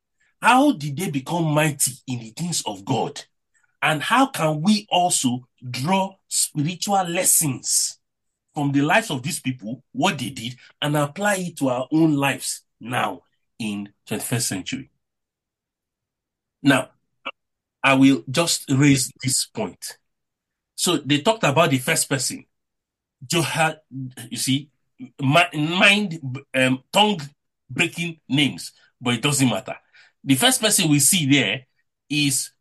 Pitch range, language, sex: 130-185 Hz, English, male